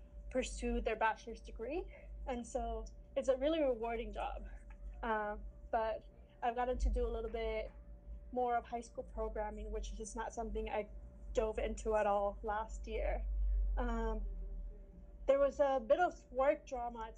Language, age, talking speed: English, 20-39, 155 wpm